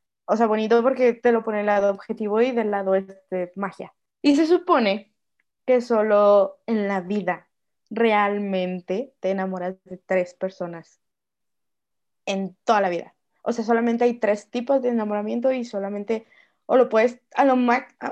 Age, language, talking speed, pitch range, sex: 20-39, Spanish, 165 wpm, 195-250 Hz, female